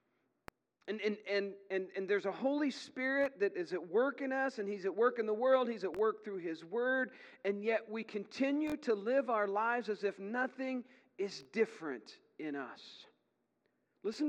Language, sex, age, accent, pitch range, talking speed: English, male, 40-59, American, 185-270 Hz, 185 wpm